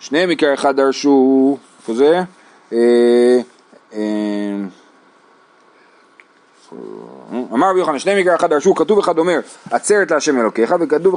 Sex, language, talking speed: male, Hebrew, 120 wpm